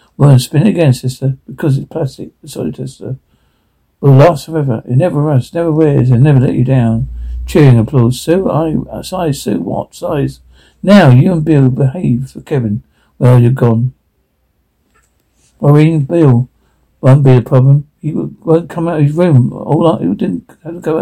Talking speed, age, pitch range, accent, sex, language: 190 wpm, 60-79, 125-155 Hz, British, male, English